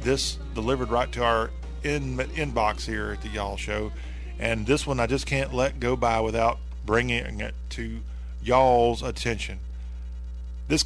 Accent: American